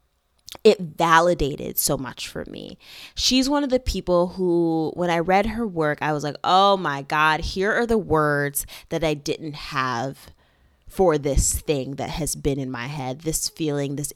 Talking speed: 180 wpm